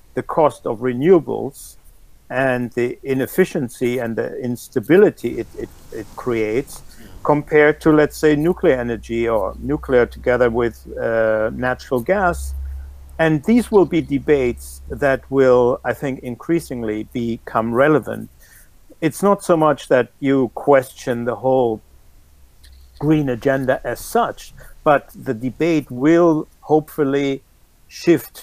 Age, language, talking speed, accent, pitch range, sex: 60-79, English, 120 wpm, German, 120-145 Hz, male